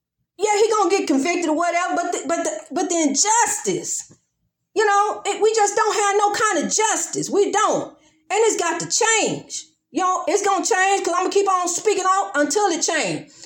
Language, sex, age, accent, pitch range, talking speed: English, female, 40-59, American, 310-415 Hz, 225 wpm